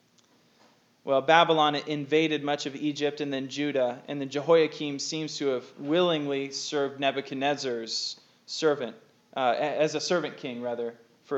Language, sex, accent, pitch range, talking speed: English, male, American, 135-170 Hz, 135 wpm